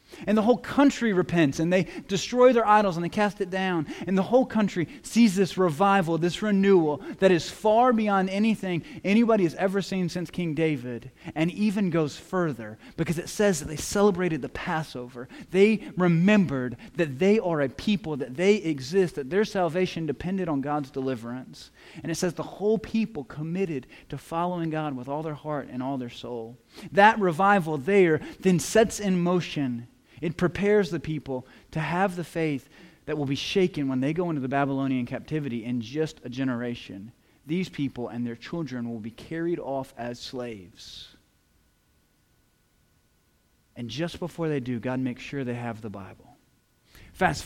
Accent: American